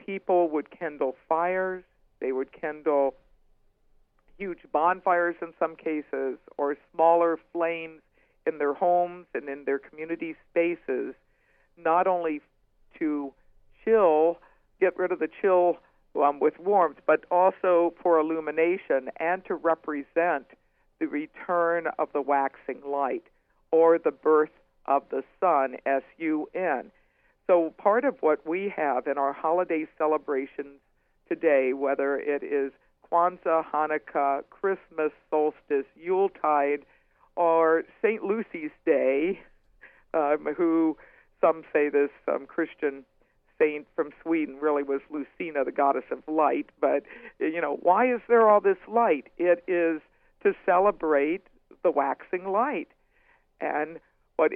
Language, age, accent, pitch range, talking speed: English, 60-79, American, 145-180 Hz, 125 wpm